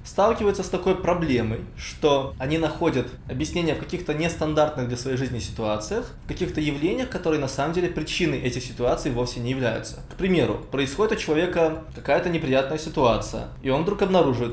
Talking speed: 165 wpm